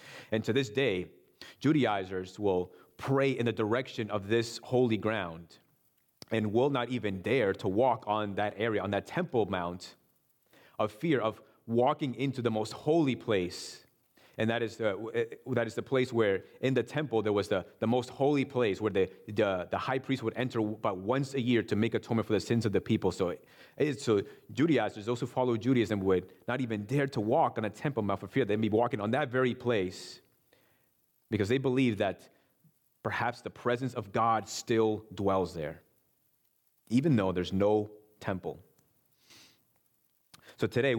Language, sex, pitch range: English, male, 100-125 Hz